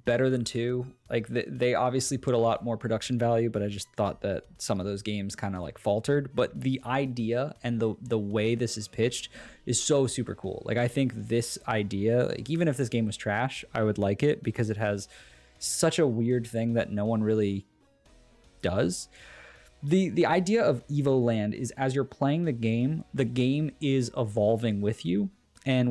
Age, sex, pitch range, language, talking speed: 20-39, male, 105-130 Hz, English, 200 wpm